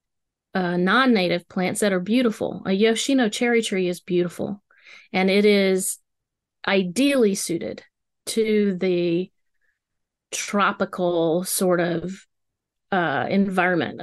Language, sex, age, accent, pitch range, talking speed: English, female, 40-59, American, 180-220 Hz, 105 wpm